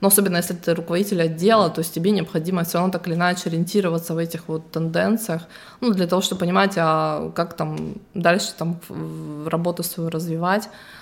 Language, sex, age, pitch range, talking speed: Russian, female, 20-39, 170-195 Hz, 185 wpm